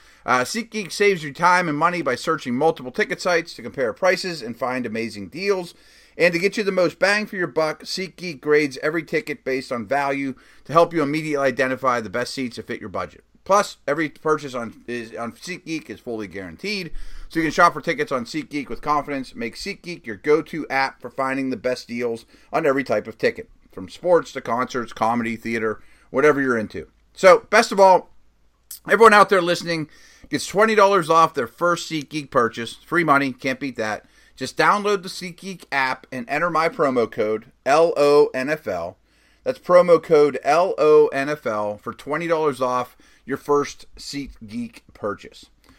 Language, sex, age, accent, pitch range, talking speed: English, male, 30-49, American, 130-180 Hz, 175 wpm